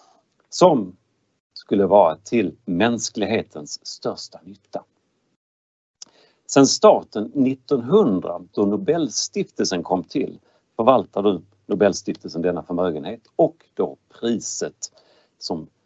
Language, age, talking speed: Swedish, 50-69, 85 wpm